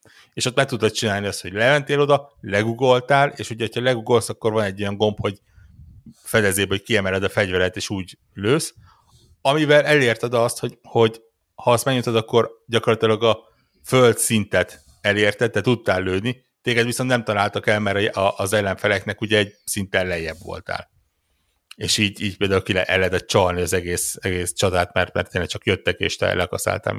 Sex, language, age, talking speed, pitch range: male, Hungarian, 60-79, 170 wpm, 90-110 Hz